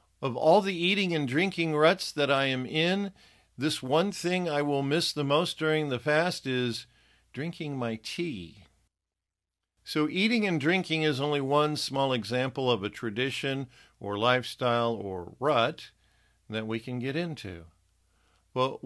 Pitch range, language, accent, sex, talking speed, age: 115-160 Hz, English, American, male, 155 wpm, 50-69